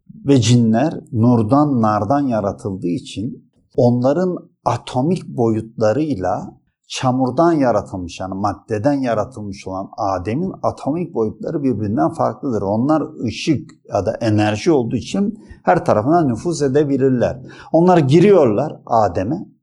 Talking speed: 105 wpm